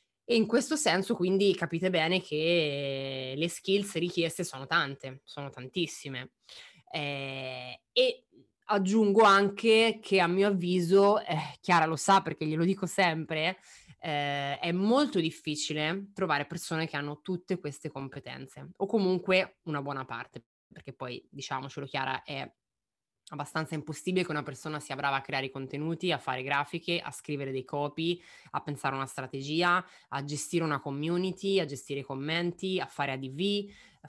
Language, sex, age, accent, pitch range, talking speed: Italian, female, 20-39, native, 145-185 Hz, 155 wpm